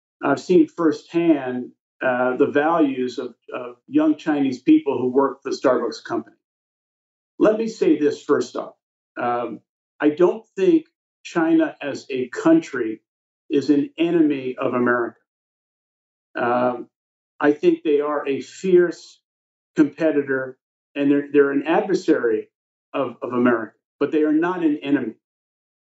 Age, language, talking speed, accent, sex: 50-69, English, 135 wpm, American, male